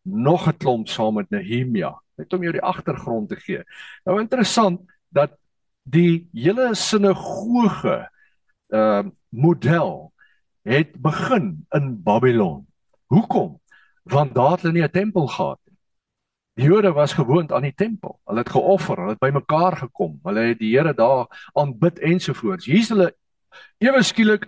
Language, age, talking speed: English, 50-69, 135 wpm